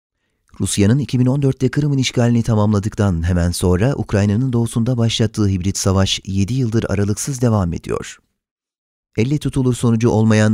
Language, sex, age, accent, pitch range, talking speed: Turkish, male, 30-49, native, 95-115 Hz, 120 wpm